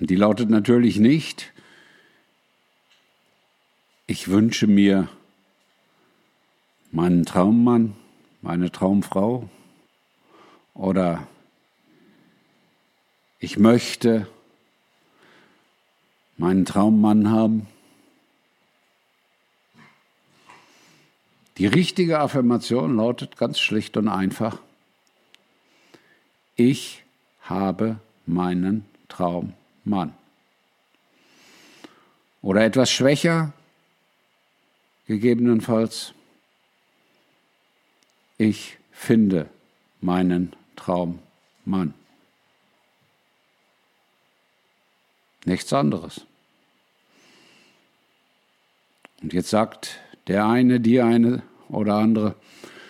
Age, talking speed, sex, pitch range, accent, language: 50-69, 55 wpm, male, 95-120 Hz, German, German